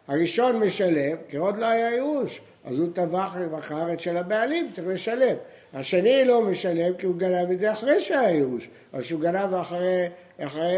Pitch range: 150-215 Hz